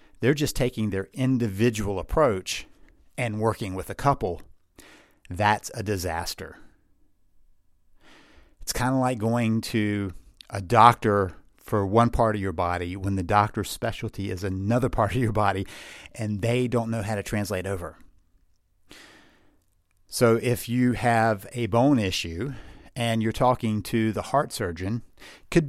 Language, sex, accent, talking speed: English, male, American, 140 wpm